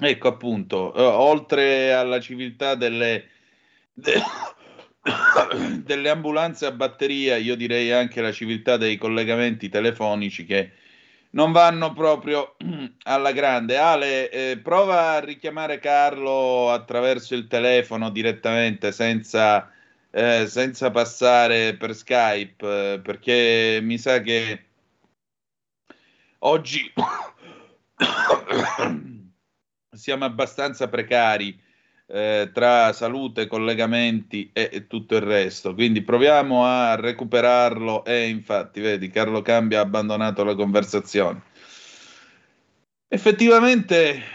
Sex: male